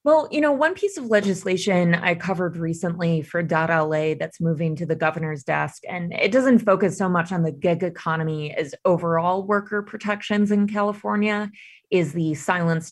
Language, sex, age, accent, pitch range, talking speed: English, female, 20-39, American, 160-200 Hz, 165 wpm